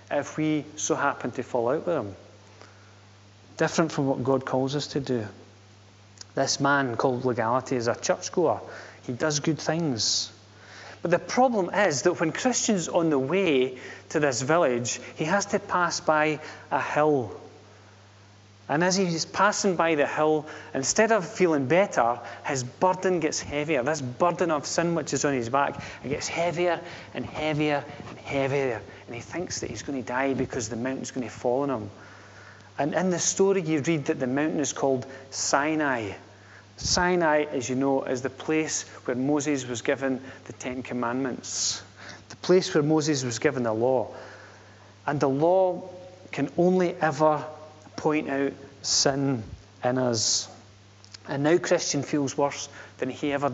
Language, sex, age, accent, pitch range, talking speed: English, male, 30-49, British, 115-155 Hz, 165 wpm